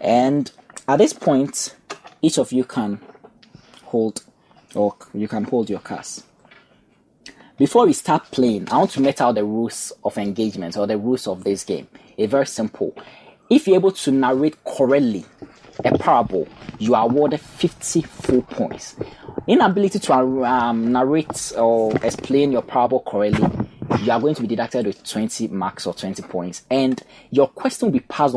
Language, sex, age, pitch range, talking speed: English, male, 20-39, 110-145 Hz, 165 wpm